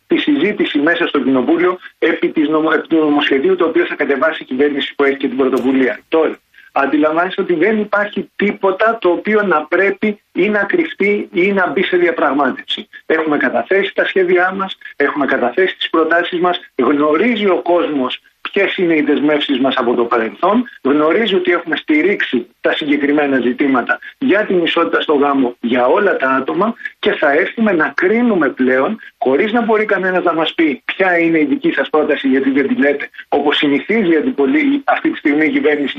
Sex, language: male, Greek